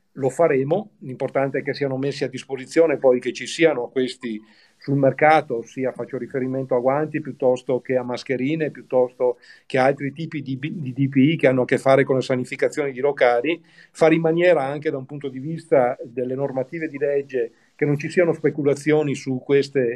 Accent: native